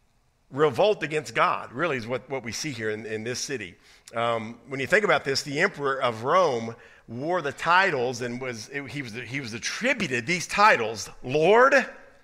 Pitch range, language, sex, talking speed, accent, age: 130-175 Hz, English, male, 185 wpm, American, 50-69